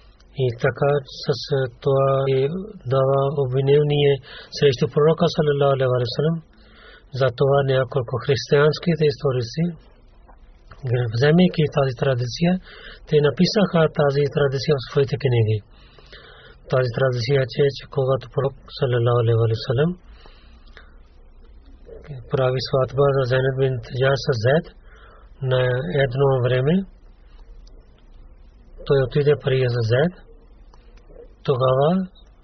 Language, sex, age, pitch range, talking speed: Bulgarian, male, 40-59, 125-150 Hz, 80 wpm